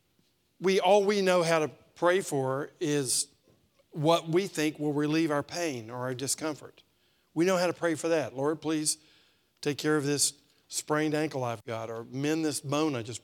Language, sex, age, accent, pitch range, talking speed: English, male, 50-69, American, 140-180 Hz, 190 wpm